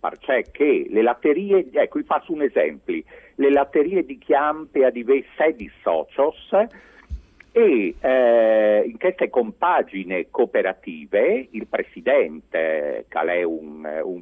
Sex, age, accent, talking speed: male, 50-69, native, 125 wpm